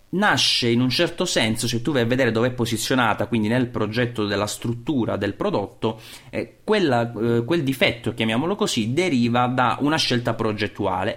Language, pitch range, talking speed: Italian, 110-135 Hz, 165 wpm